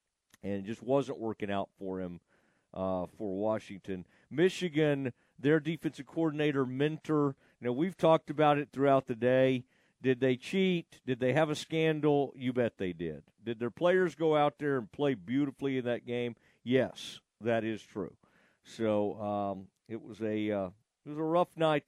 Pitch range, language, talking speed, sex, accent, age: 120-160 Hz, English, 175 wpm, male, American, 50-69